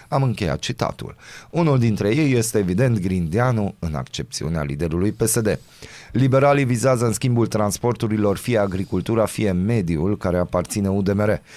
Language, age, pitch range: Romanian, 30-49, 85-115 Hz